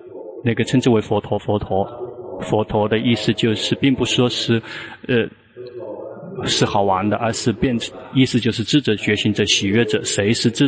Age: 20-39